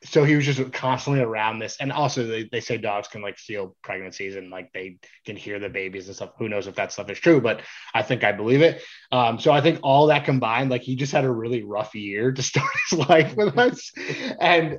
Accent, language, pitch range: American, English, 110-140 Hz